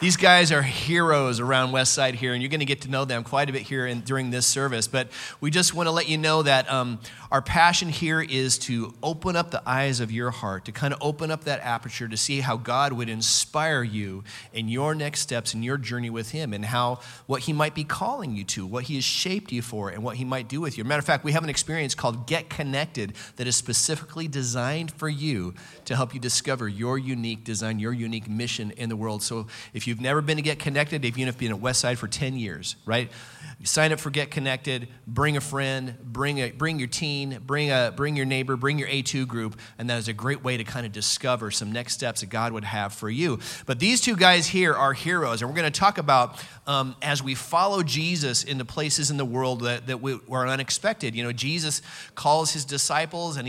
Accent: American